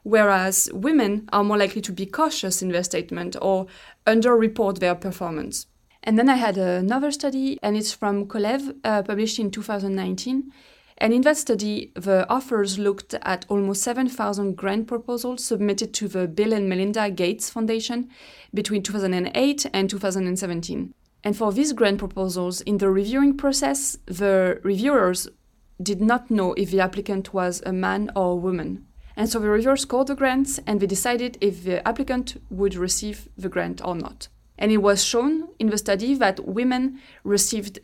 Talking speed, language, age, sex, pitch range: 165 wpm, English, 20-39, female, 190-240 Hz